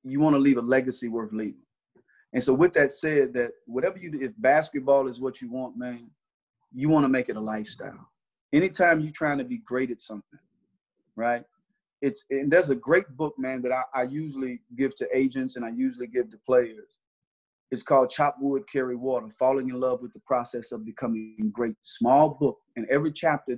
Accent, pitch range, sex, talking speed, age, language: American, 125-150 Hz, male, 200 wpm, 30-49, English